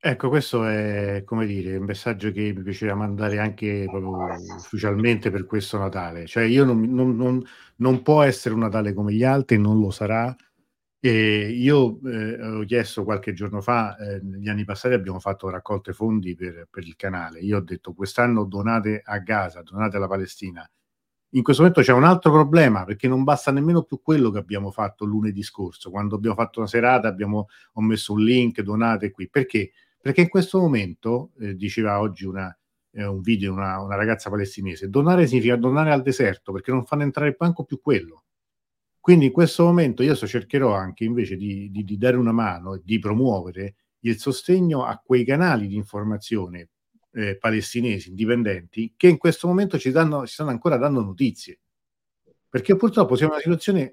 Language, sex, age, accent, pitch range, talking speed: Italian, male, 40-59, native, 100-130 Hz, 180 wpm